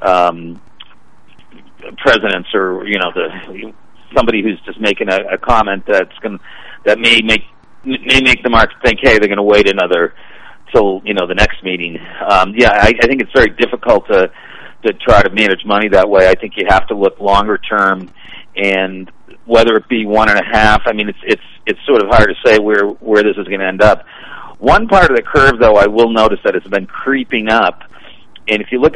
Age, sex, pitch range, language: 40-59, male, 100-115 Hz, English